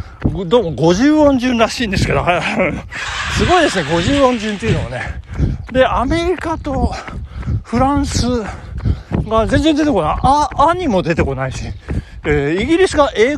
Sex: male